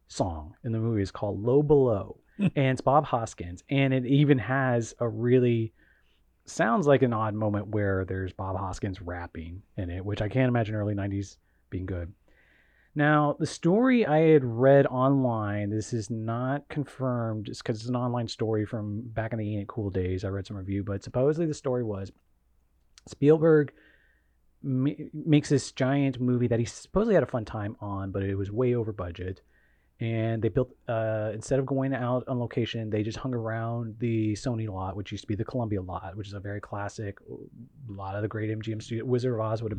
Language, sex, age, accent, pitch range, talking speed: English, male, 30-49, American, 100-130 Hz, 195 wpm